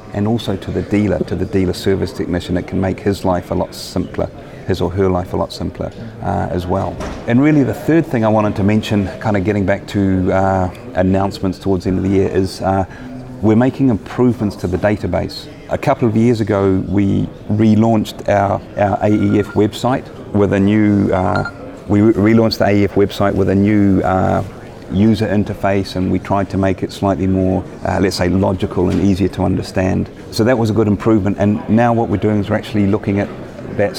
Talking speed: 210 wpm